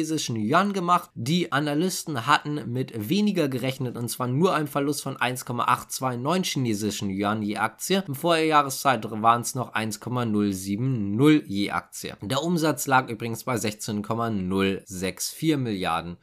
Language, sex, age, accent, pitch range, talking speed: German, male, 20-39, German, 105-160 Hz, 120 wpm